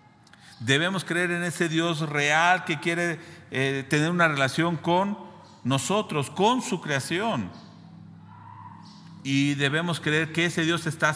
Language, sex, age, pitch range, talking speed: Spanish, male, 50-69, 120-165 Hz, 130 wpm